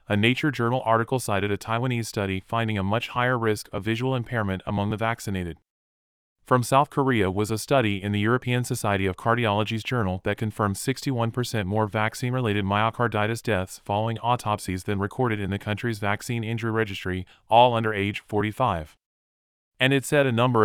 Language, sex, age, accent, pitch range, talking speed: English, male, 30-49, American, 100-120 Hz, 170 wpm